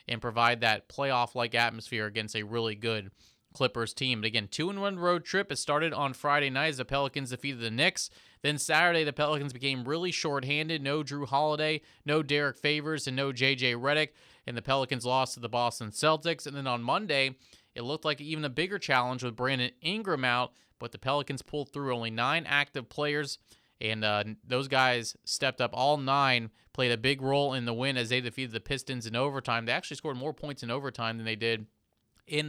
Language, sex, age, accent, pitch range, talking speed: English, male, 30-49, American, 120-145 Hz, 200 wpm